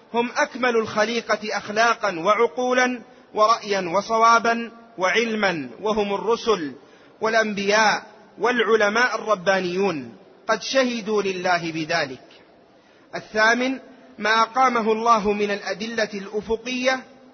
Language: Arabic